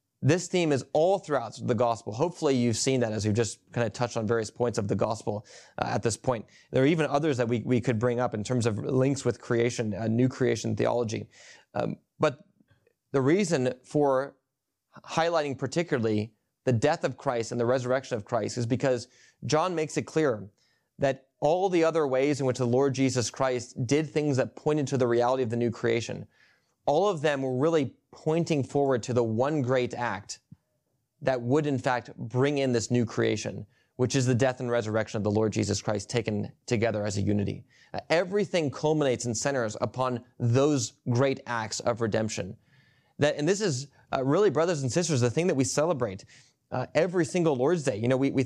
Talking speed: 200 wpm